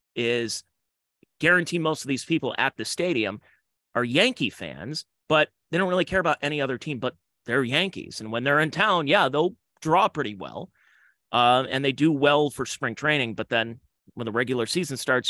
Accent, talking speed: American, 190 wpm